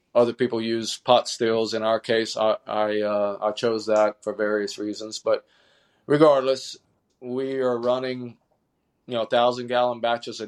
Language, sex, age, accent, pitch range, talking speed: English, male, 40-59, American, 110-120 Hz, 160 wpm